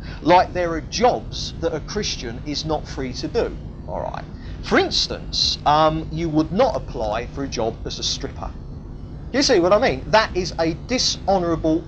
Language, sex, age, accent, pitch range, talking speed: English, male, 40-59, British, 140-170 Hz, 175 wpm